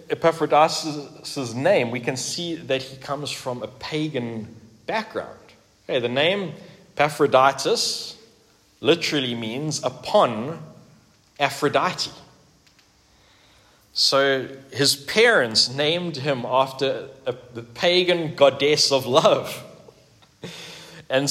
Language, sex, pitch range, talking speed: English, male, 115-160 Hz, 85 wpm